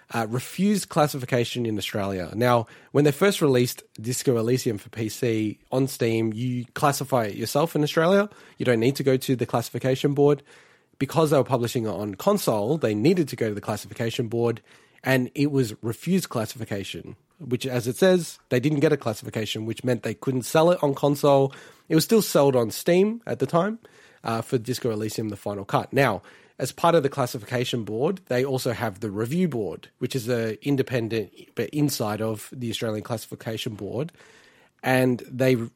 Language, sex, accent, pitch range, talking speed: English, male, Australian, 115-145 Hz, 185 wpm